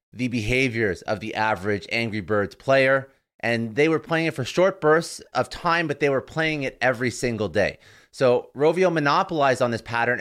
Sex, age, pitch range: male, 30-49, 110-140 Hz